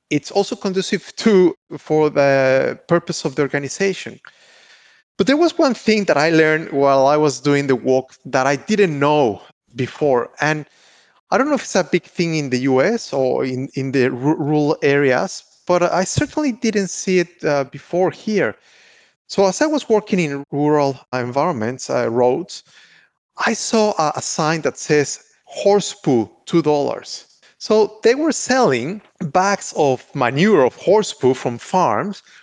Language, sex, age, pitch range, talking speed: English, male, 30-49, 145-210 Hz, 165 wpm